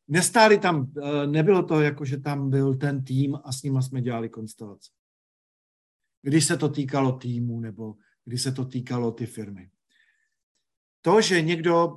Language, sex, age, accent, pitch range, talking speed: Czech, male, 50-69, native, 135-165 Hz, 155 wpm